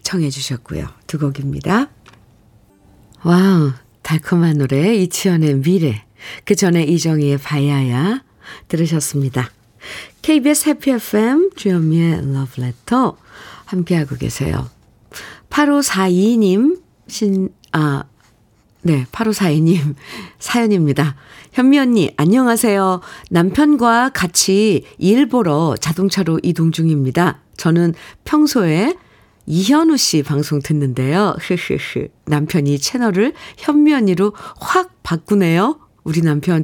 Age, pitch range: 50-69, 155-230 Hz